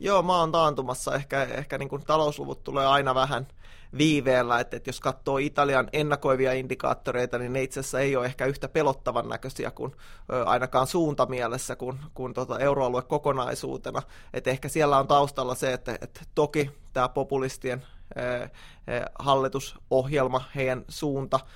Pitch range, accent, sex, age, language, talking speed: 130-145 Hz, native, male, 20-39, Finnish, 140 wpm